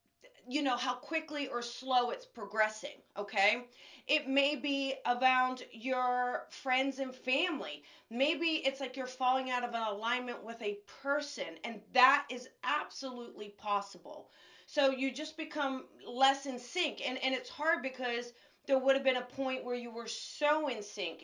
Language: English